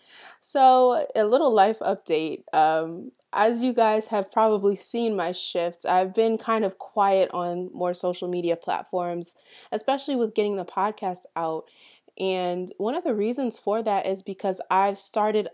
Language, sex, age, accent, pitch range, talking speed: English, female, 20-39, American, 165-205 Hz, 160 wpm